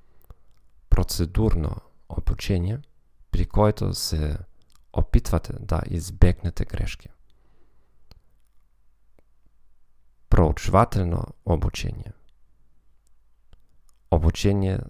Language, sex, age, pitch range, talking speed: Bulgarian, male, 40-59, 85-105 Hz, 50 wpm